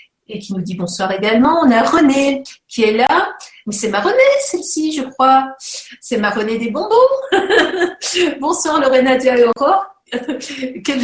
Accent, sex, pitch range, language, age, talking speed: French, female, 235-335 Hz, French, 50-69, 165 wpm